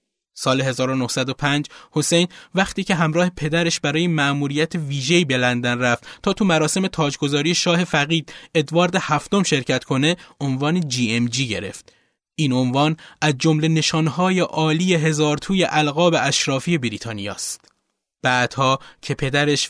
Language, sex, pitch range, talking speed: Persian, male, 130-170 Hz, 120 wpm